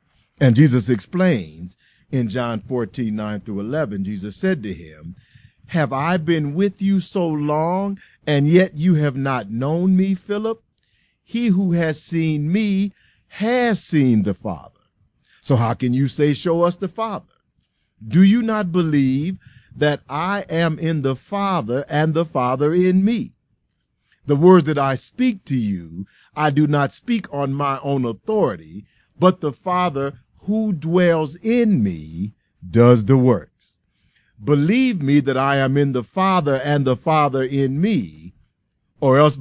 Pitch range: 120-180 Hz